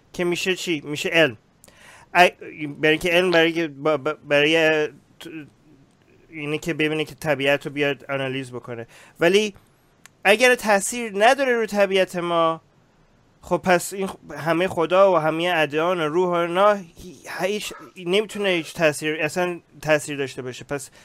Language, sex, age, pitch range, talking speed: Persian, male, 30-49, 155-190 Hz, 135 wpm